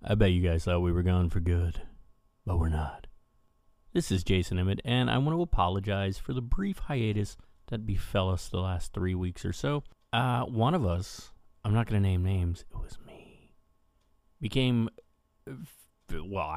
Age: 30-49